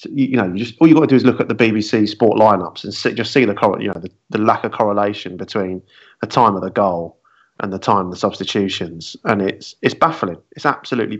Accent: British